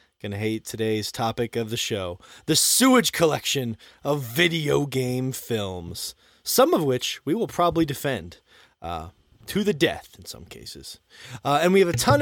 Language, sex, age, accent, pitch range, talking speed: English, male, 30-49, American, 125-210 Hz, 170 wpm